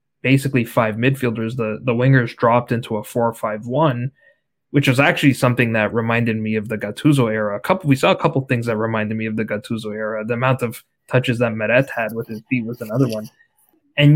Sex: male